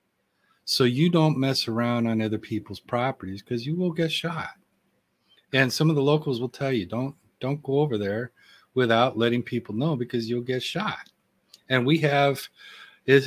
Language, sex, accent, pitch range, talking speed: English, male, American, 115-150 Hz, 175 wpm